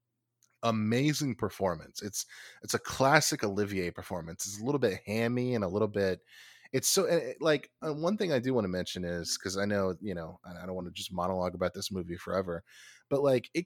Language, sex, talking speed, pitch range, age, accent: English, male, 200 wpm, 95-130 Hz, 20-39, American